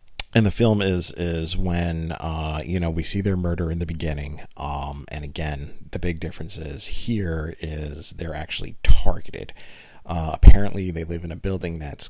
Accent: American